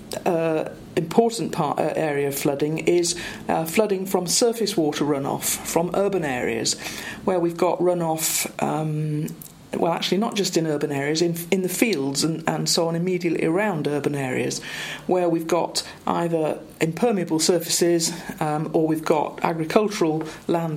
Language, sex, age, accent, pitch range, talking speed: English, female, 40-59, British, 155-180 Hz, 155 wpm